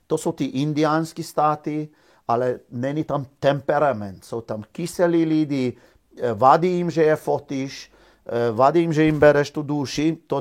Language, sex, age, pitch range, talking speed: Czech, male, 50-69, 135-165 Hz, 150 wpm